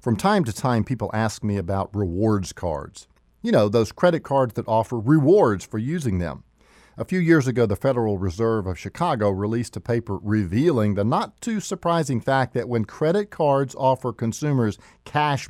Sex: male